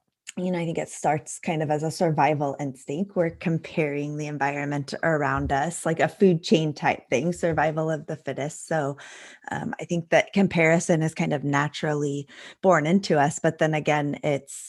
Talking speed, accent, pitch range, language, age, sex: 185 wpm, American, 145-170 Hz, English, 20-39, female